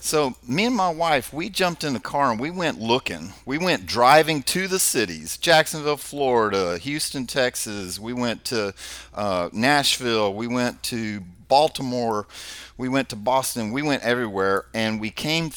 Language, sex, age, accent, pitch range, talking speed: English, male, 40-59, American, 105-140 Hz, 165 wpm